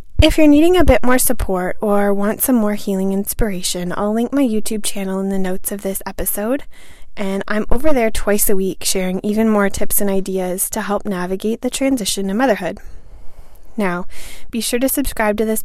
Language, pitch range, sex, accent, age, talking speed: English, 195-230 Hz, female, American, 20-39, 195 wpm